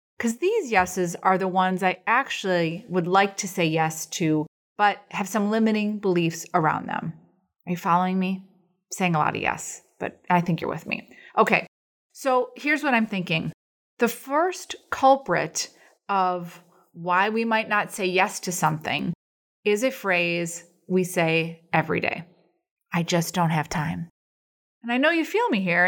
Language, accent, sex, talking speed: English, American, female, 170 wpm